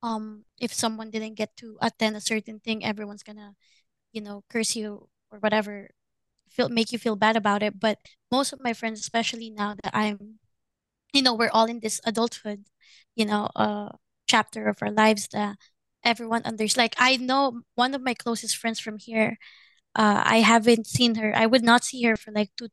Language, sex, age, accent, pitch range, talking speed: Filipino, female, 20-39, native, 215-240 Hz, 200 wpm